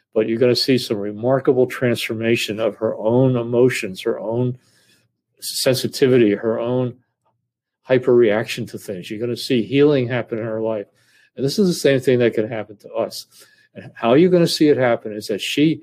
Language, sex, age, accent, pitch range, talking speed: English, male, 50-69, American, 110-125 Hz, 195 wpm